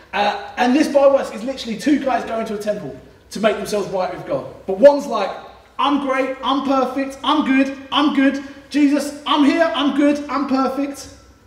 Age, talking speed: 20-39, 195 wpm